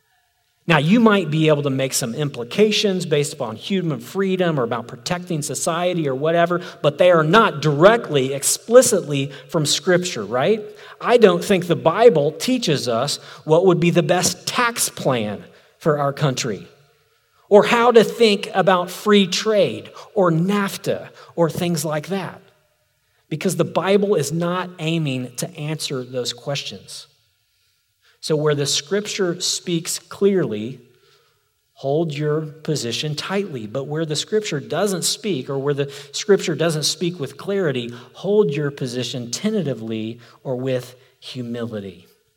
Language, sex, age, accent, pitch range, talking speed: English, male, 40-59, American, 145-195 Hz, 140 wpm